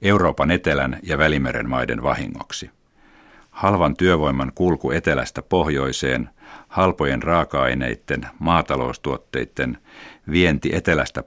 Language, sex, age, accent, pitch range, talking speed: Finnish, male, 50-69, native, 65-85 Hz, 85 wpm